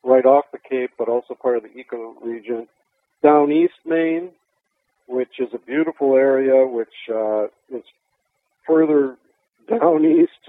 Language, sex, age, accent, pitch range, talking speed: English, male, 50-69, American, 120-155 Hz, 145 wpm